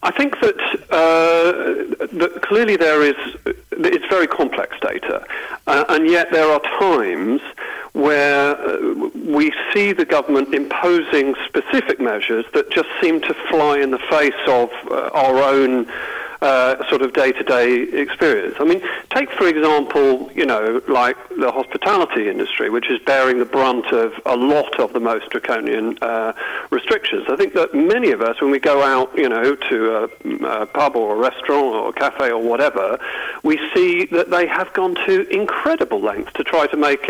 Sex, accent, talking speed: male, British, 170 wpm